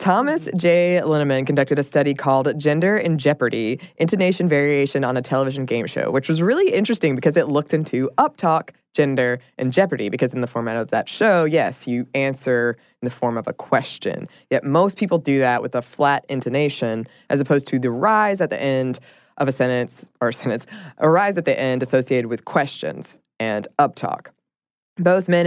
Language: English